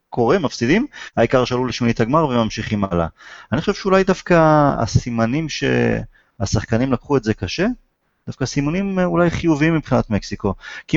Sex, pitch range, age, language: male, 105-140 Hz, 30-49, Hebrew